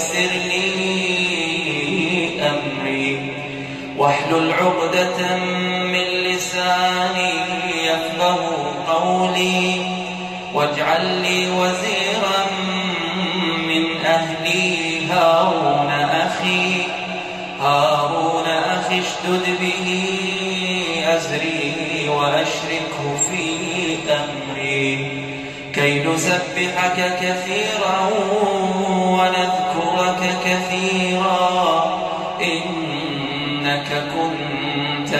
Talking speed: 50 wpm